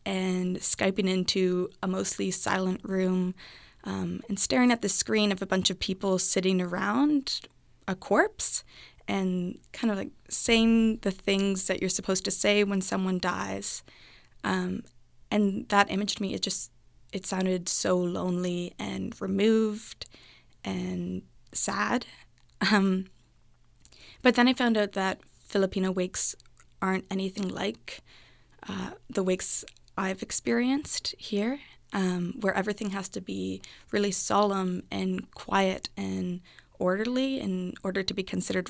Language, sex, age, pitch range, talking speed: English, female, 20-39, 185-210 Hz, 135 wpm